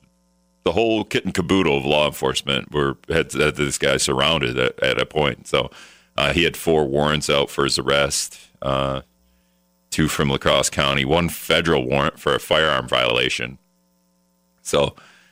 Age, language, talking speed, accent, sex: 40-59, English, 155 wpm, American, male